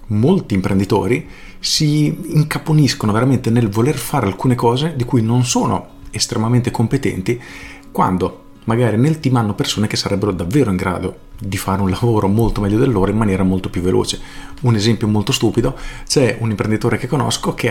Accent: native